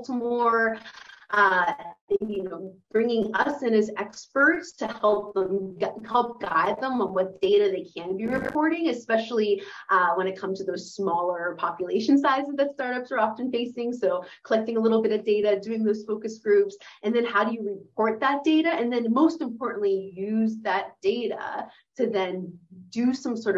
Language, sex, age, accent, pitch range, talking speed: English, female, 30-49, American, 190-240 Hz, 175 wpm